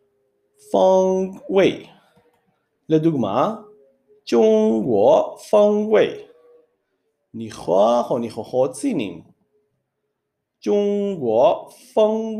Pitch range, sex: 135-215 Hz, male